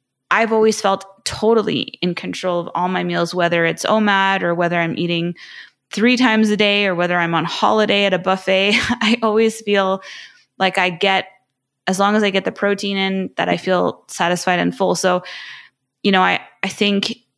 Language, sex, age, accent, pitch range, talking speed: English, female, 20-39, American, 175-200 Hz, 190 wpm